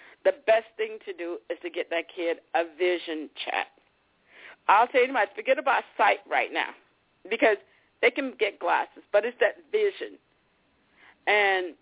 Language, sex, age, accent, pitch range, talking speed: English, female, 50-69, American, 195-275 Hz, 160 wpm